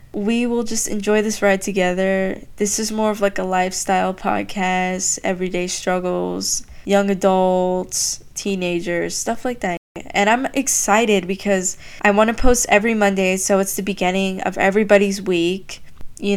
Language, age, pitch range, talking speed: English, 10-29, 185-215 Hz, 150 wpm